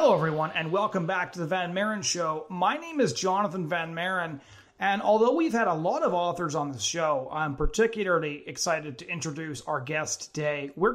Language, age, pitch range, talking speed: English, 30-49, 160-205 Hz, 195 wpm